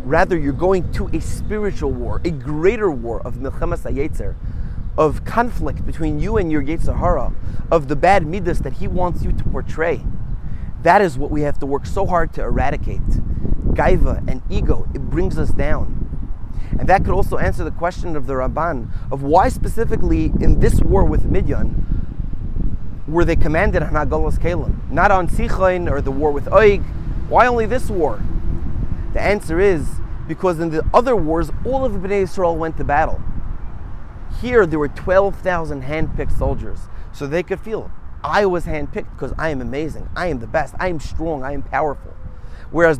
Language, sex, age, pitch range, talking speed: English, male, 30-49, 135-185 Hz, 175 wpm